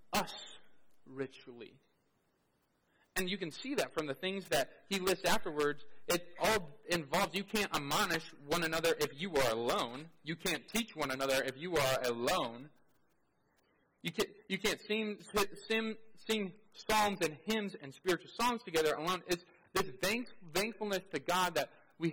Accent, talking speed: American, 150 wpm